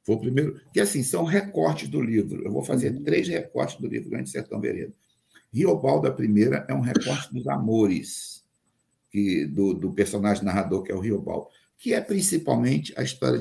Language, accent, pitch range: Portuguese, Brazilian, 100-150 Hz